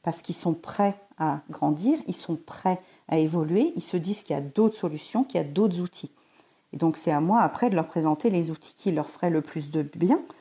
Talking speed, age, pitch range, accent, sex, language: 240 wpm, 50-69, 165-215 Hz, French, female, French